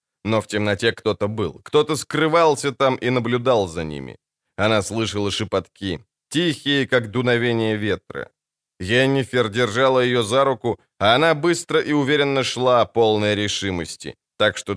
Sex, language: male, Ukrainian